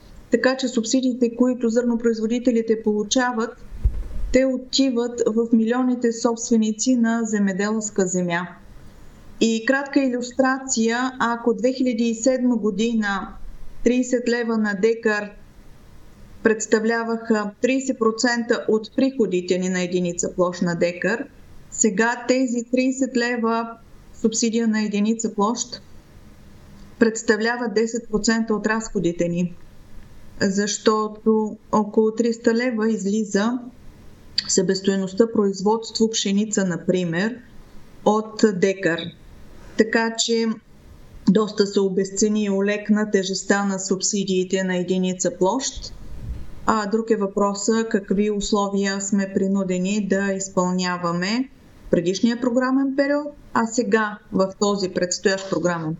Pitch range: 195-235 Hz